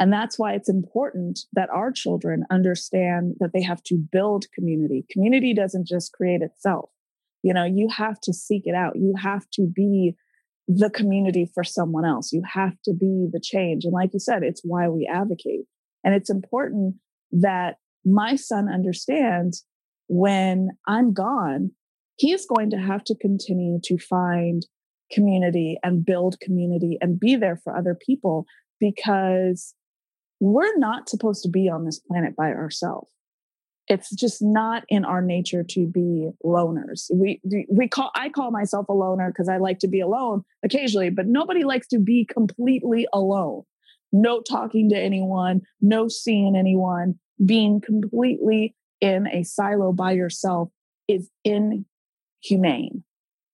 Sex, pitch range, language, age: female, 180-215 Hz, English, 20-39